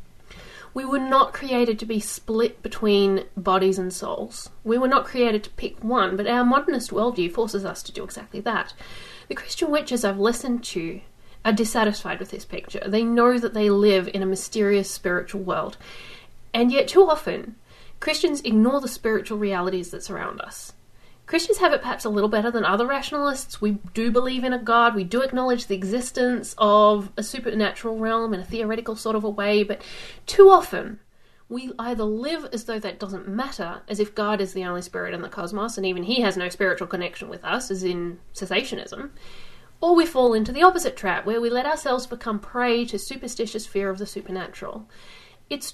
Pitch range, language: 195-245 Hz, English